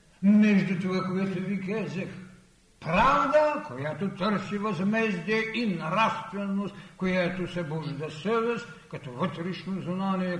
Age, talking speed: 60-79, 105 wpm